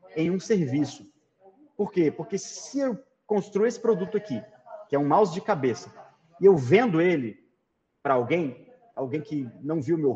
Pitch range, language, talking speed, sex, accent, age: 150-205 Hz, Portuguese, 175 wpm, male, Brazilian, 30-49